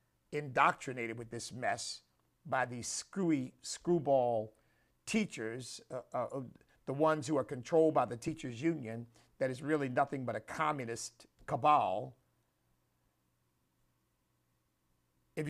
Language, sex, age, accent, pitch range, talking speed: English, male, 50-69, American, 115-155 Hz, 110 wpm